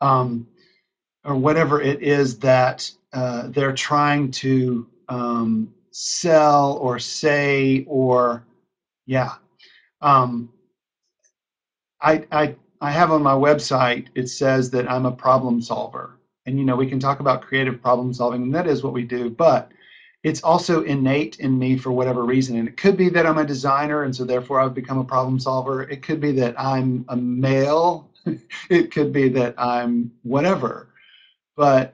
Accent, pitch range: American, 125-150 Hz